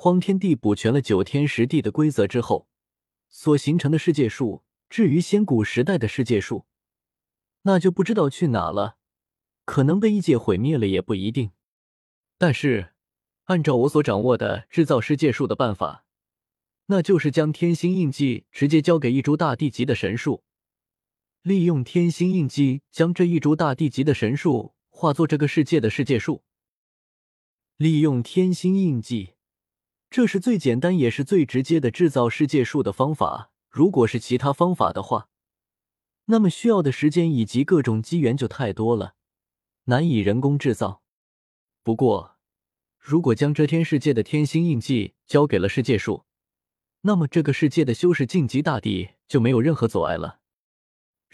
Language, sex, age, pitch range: Chinese, male, 20-39, 120-165 Hz